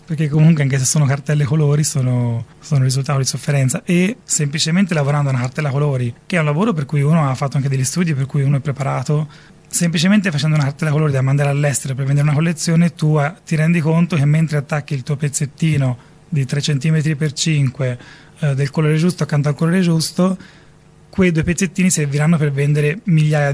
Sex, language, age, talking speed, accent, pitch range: male, Italian, 30-49, 195 wpm, native, 135-160 Hz